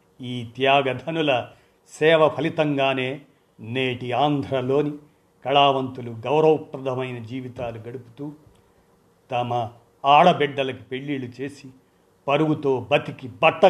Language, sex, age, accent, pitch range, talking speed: Telugu, male, 50-69, native, 115-140 Hz, 75 wpm